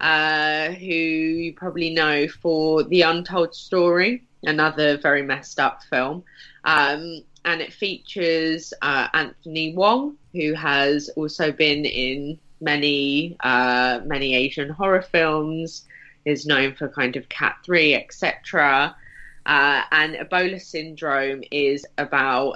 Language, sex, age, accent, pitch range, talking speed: English, female, 20-39, British, 140-165 Hz, 120 wpm